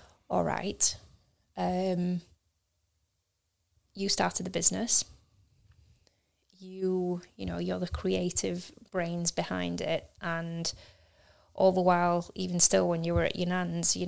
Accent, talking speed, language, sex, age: British, 120 wpm, English, female, 20-39